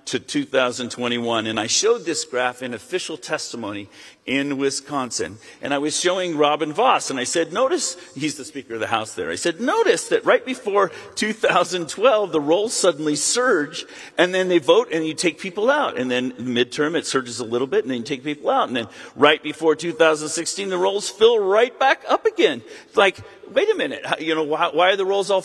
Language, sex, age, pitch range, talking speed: English, male, 50-69, 150-230 Hz, 205 wpm